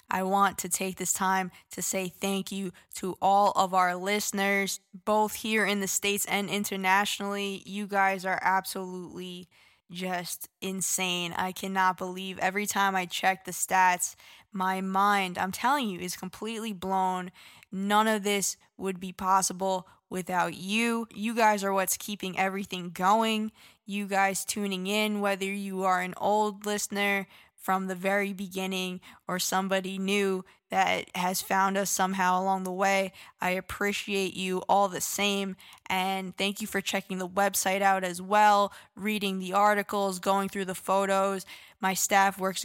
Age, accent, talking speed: 10-29, American, 155 wpm